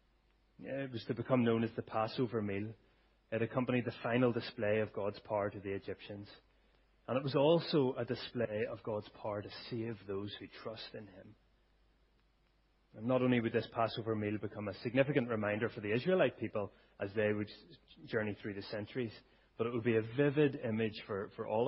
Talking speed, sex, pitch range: 190 wpm, male, 105-125 Hz